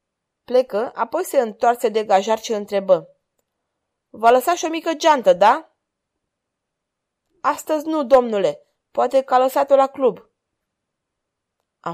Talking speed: 125 wpm